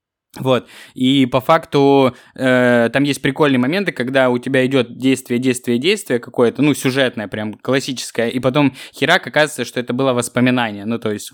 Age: 20-39